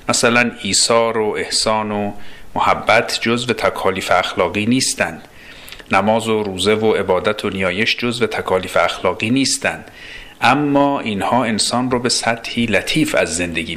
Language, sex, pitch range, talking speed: Persian, male, 95-120 Hz, 130 wpm